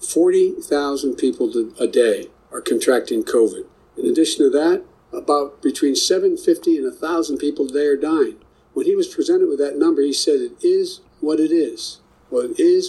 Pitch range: 330-405 Hz